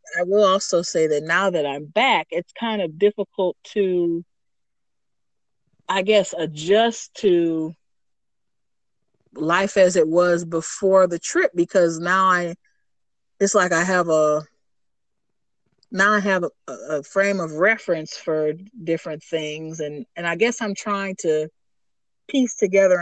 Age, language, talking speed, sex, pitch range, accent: 30-49, English, 140 wpm, female, 155-195 Hz, American